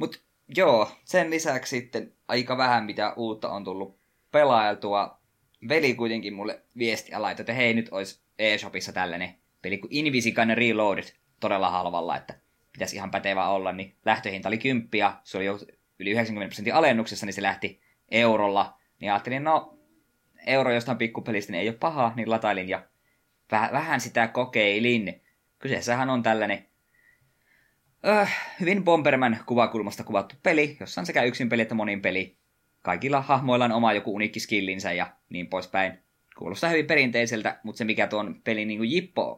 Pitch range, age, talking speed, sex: 100-125 Hz, 20-39, 150 wpm, male